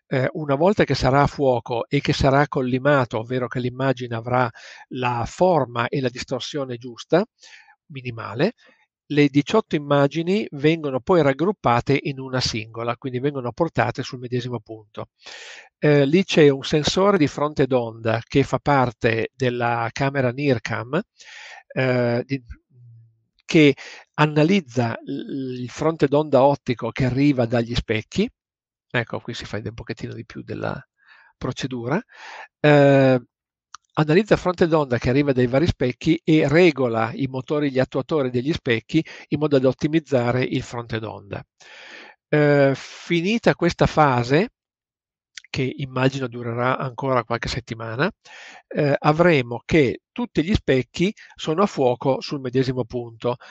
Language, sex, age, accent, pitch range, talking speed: Italian, male, 50-69, native, 125-155 Hz, 130 wpm